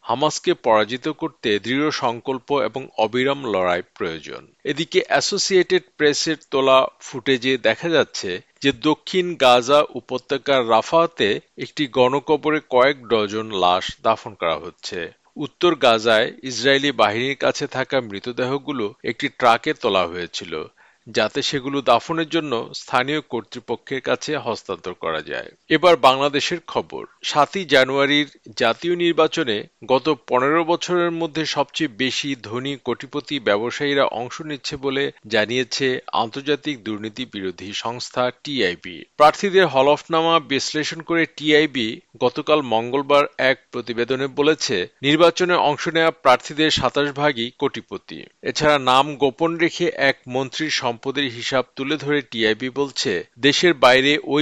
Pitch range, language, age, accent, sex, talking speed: 125-150 Hz, Bengali, 50-69, native, male, 80 wpm